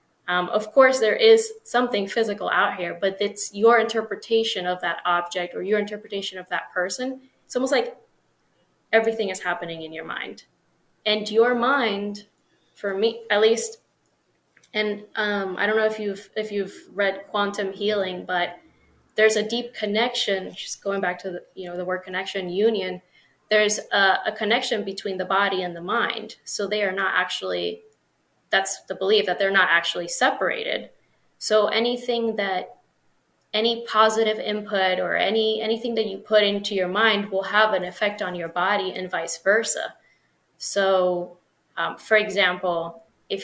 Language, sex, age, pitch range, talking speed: English, female, 20-39, 185-220 Hz, 165 wpm